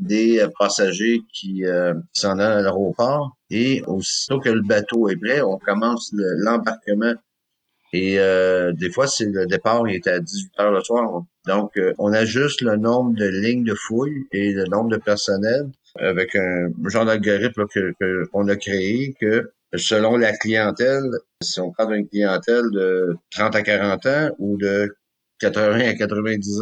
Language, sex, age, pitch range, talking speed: French, male, 50-69, 100-115 Hz, 165 wpm